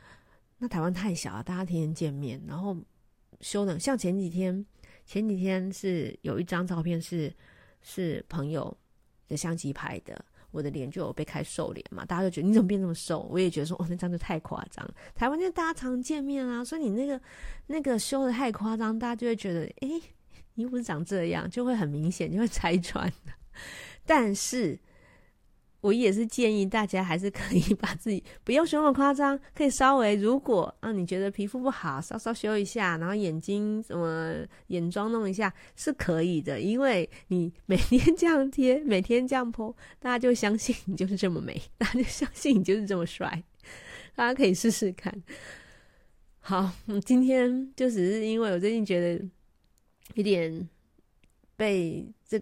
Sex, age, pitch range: female, 30-49, 175-240 Hz